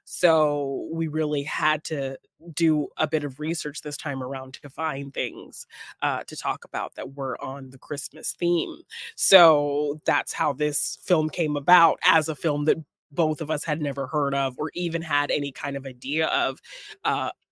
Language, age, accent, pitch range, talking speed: English, 20-39, American, 140-160 Hz, 180 wpm